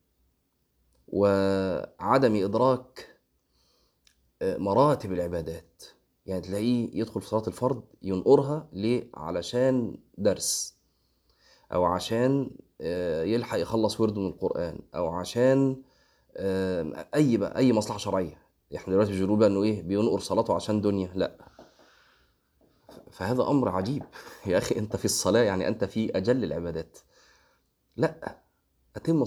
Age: 30-49